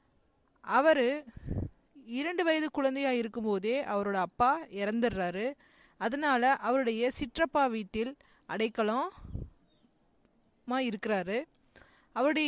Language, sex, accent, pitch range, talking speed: Tamil, female, native, 220-275 Hz, 75 wpm